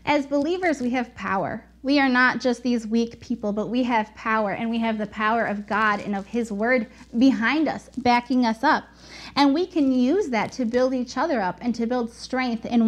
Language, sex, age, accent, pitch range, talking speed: English, female, 20-39, American, 215-260 Hz, 220 wpm